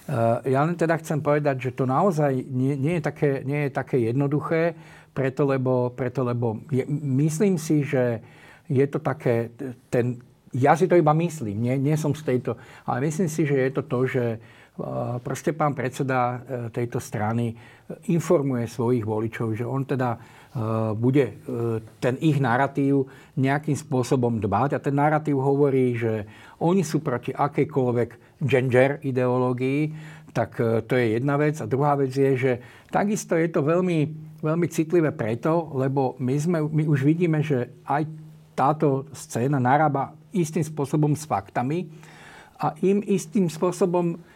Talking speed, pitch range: 155 wpm, 125-155 Hz